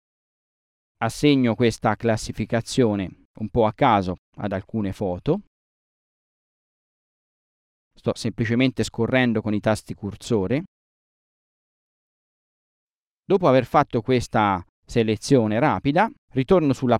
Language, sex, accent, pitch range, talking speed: Italian, male, native, 110-145 Hz, 90 wpm